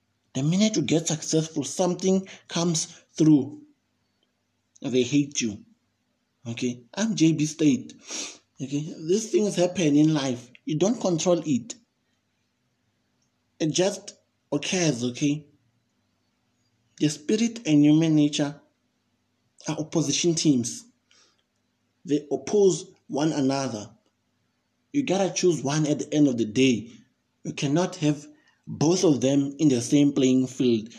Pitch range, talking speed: 125-160 Hz, 120 wpm